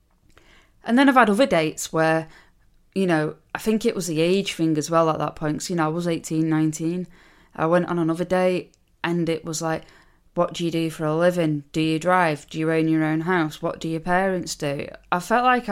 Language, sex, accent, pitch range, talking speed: English, female, British, 155-180 Hz, 235 wpm